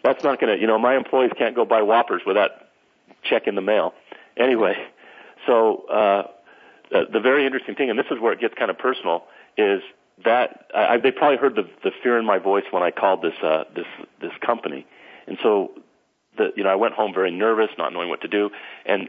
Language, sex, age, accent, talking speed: English, male, 40-59, American, 215 wpm